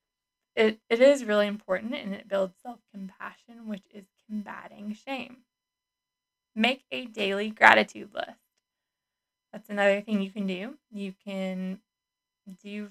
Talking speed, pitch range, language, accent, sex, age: 125 wpm, 195-230 Hz, English, American, female, 20-39